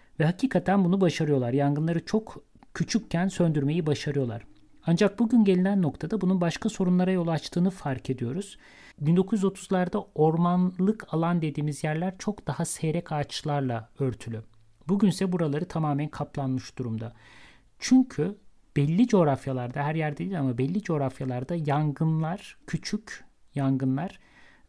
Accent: Turkish